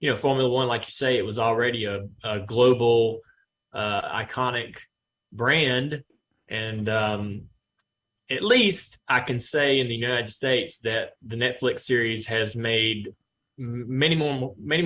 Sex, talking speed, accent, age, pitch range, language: male, 135 wpm, American, 20-39, 110-125 Hz, English